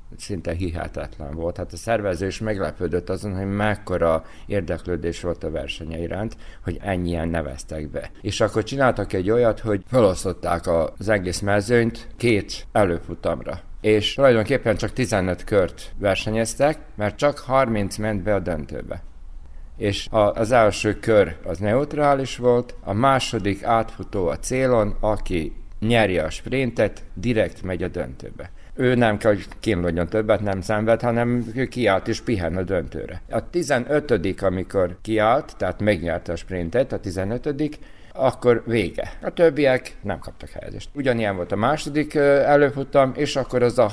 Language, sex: Hungarian, male